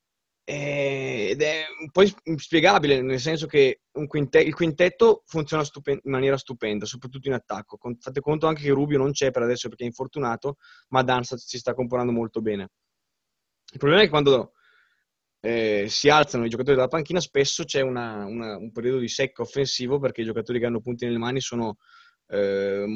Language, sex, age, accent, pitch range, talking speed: Italian, male, 20-39, native, 120-145 Hz, 180 wpm